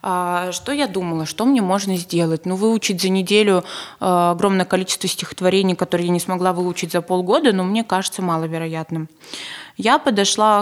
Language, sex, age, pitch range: Russian, female, 20-39, 175-215 Hz